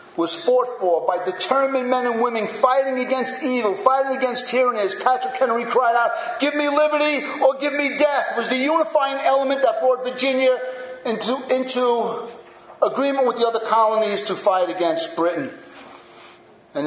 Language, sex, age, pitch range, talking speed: English, male, 50-69, 175-295 Hz, 165 wpm